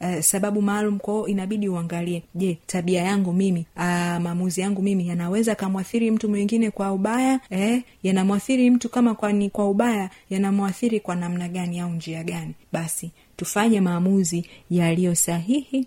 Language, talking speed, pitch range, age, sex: Swahili, 150 wpm, 180-210 Hz, 30-49, female